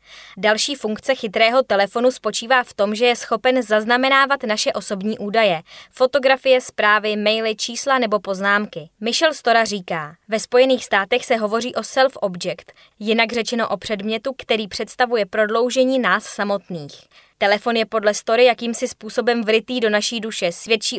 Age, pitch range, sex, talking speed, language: 20-39, 205-250 Hz, female, 145 wpm, Czech